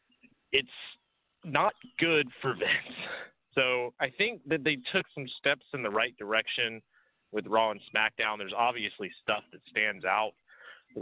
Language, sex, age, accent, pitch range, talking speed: English, male, 30-49, American, 110-180 Hz, 150 wpm